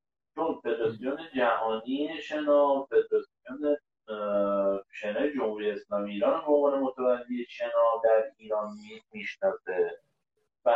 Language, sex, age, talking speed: Persian, male, 50-69, 85 wpm